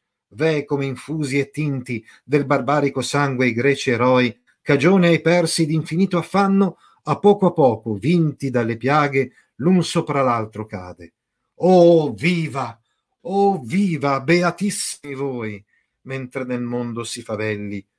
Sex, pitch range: male, 110-170 Hz